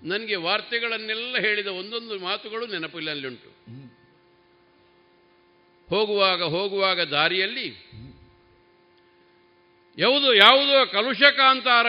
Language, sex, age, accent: Kannada, male, 50-69, native